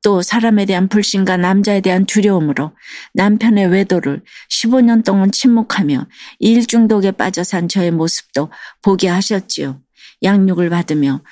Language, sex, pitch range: Korean, female, 175-215 Hz